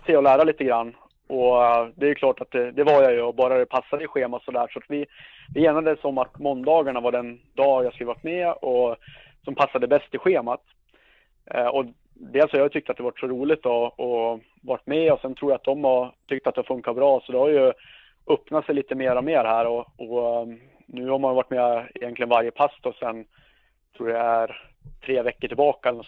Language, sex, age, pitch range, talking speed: Swedish, male, 30-49, 120-140 Hz, 230 wpm